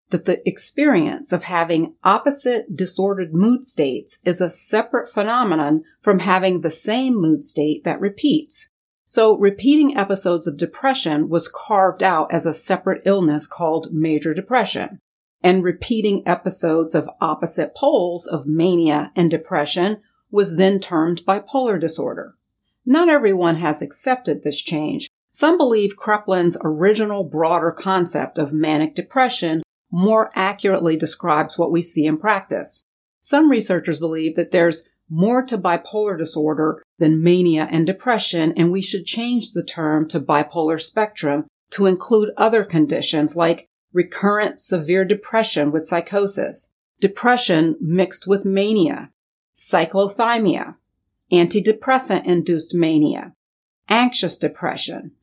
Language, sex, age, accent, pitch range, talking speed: English, female, 50-69, American, 160-215 Hz, 125 wpm